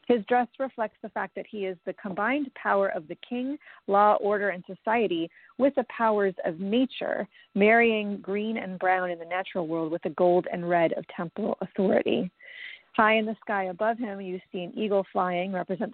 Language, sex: English, female